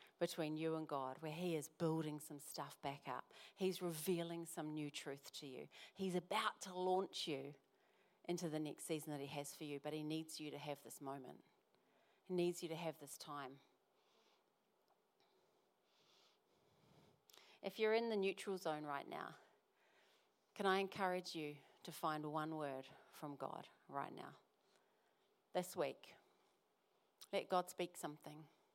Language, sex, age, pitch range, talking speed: English, female, 40-59, 145-185 Hz, 155 wpm